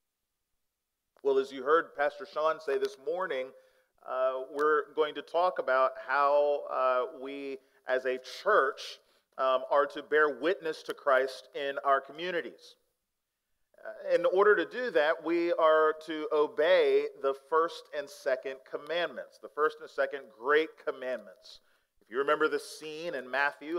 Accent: American